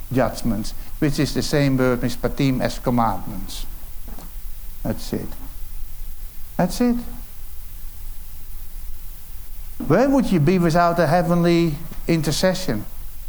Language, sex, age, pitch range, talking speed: English, male, 60-79, 90-155 Hz, 95 wpm